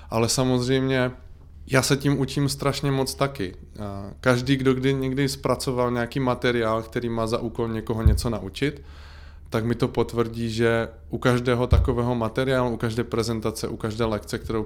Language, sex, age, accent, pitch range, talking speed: Czech, male, 20-39, native, 110-125 Hz, 160 wpm